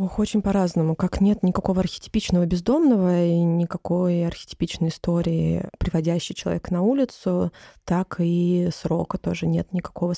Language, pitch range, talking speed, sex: Russian, 165-190 Hz, 130 wpm, female